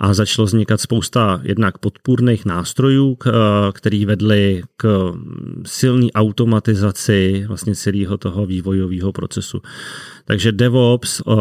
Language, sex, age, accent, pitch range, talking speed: Czech, male, 30-49, native, 95-115 Hz, 100 wpm